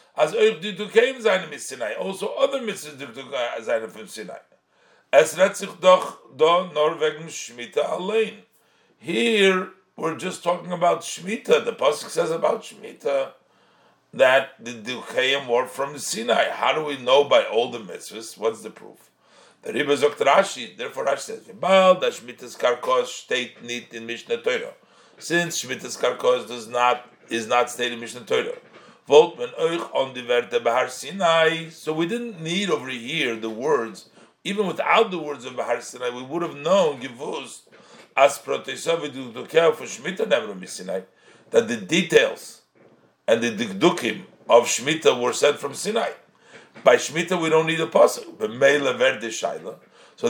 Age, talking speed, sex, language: 50-69, 135 wpm, male, English